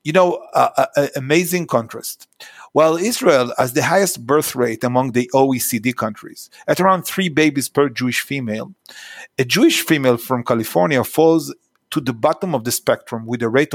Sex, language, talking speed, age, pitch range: male, Hebrew, 180 wpm, 50-69, 125-165 Hz